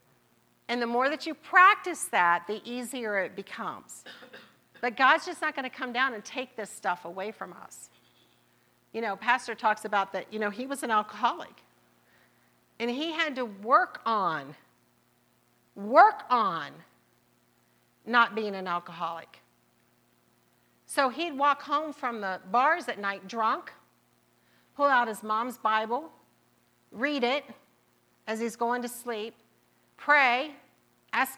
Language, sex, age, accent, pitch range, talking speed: English, female, 50-69, American, 205-270 Hz, 140 wpm